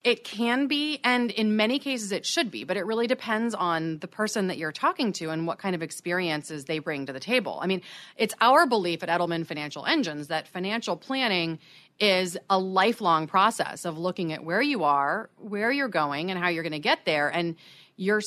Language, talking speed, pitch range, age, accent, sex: English, 215 wpm, 165-230 Hz, 30-49, American, female